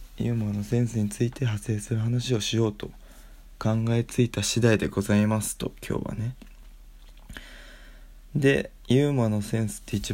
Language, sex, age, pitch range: Japanese, male, 20-39, 100-115 Hz